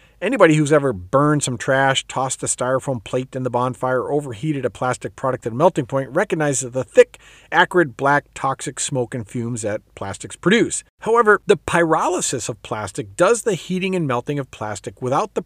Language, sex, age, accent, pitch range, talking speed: English, male, 50-69, American, 125-175 Hz, 185 wpm